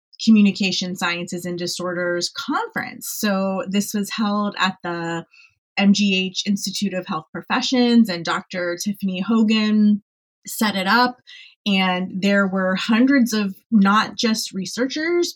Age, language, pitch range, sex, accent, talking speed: 30-49, English, 185-225 Hz, female, American, 120 wpm